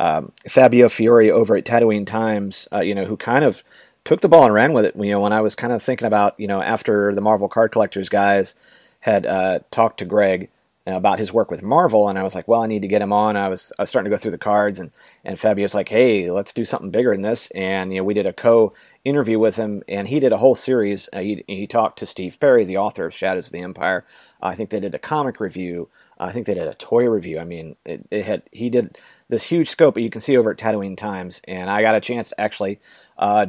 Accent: American